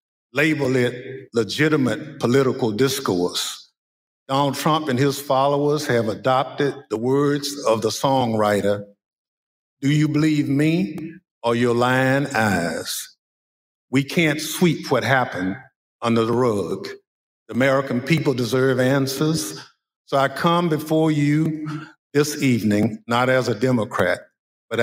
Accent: American